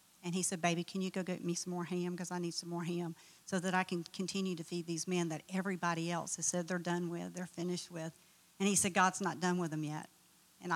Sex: female